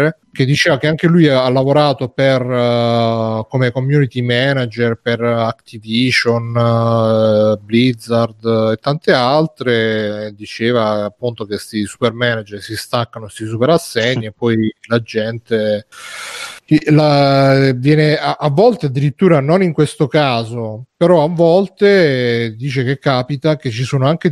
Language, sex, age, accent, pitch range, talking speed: Italian, male, 30-49, native, 115-145 Hz, 125 wpm